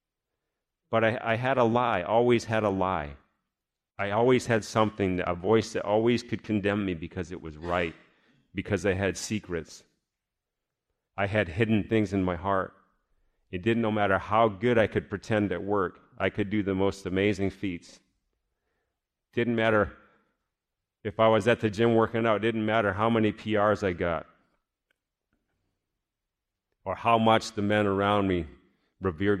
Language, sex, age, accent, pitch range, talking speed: English, male, 40-59, American, 90-115 Hz, 165 wpm